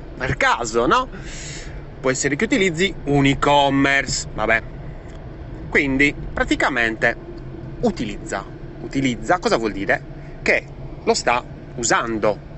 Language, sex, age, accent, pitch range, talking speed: Italian, male, 30-49, native, 120-160 Hz, 100 wpm